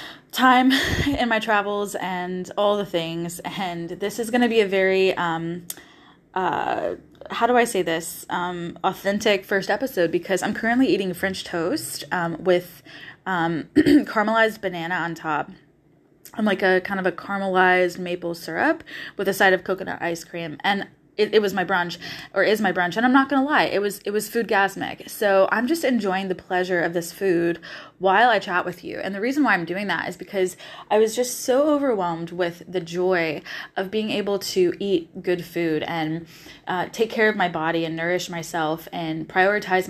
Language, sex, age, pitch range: English, female, 20-39, 170-205 Hz